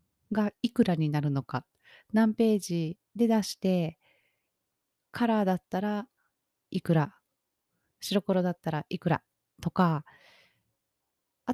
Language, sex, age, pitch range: Japanese, female, 30-49, 170-220 Hz